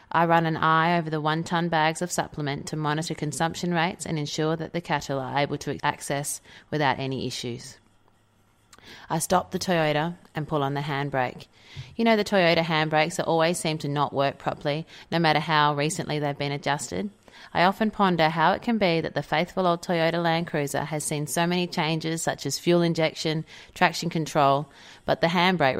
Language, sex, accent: English, female, Australian